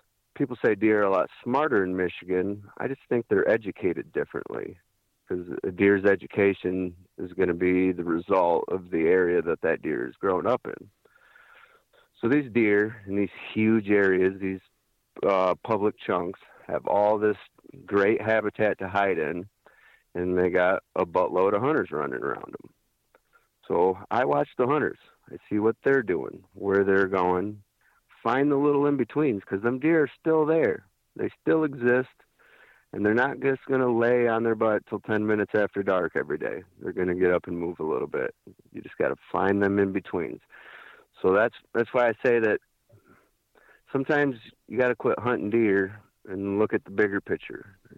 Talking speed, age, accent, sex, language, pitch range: 180 wpm, 40-59, American, male, English, 95-125 Hz